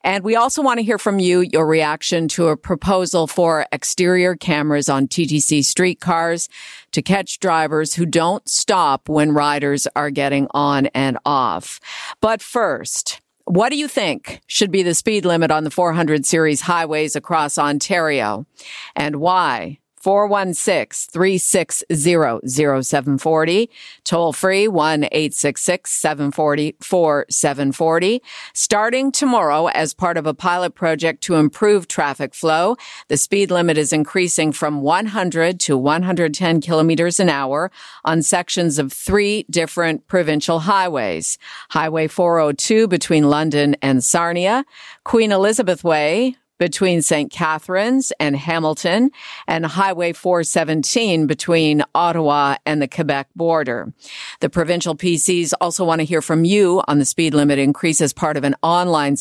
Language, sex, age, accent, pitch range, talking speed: English, female, 50-69, American, 150-185 Hz, 130 wpm